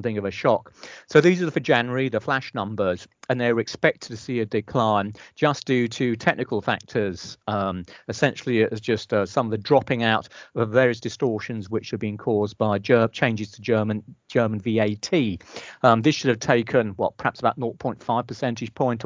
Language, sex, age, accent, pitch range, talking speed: English, male, 40-59, British, 110-130 Hz, 190 wpm